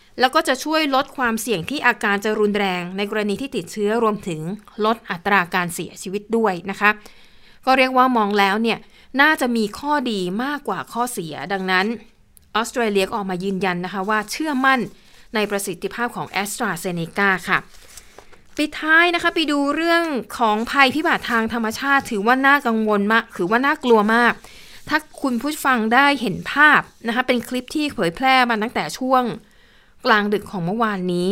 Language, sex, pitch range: Thai, female, 190-245 Hz